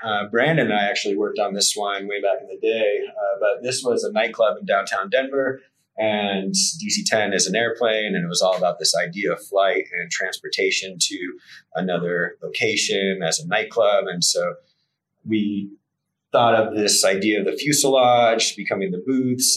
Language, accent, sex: English, American, male